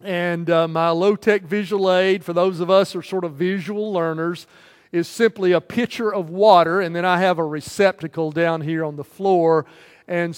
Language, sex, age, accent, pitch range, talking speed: English, male, 50-69, American, 165-205 Hz, 195 wpm